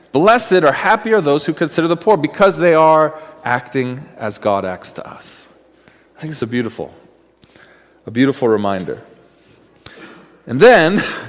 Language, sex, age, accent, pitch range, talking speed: English, male, 40-59, American, 135-190 Hz, 155 wpm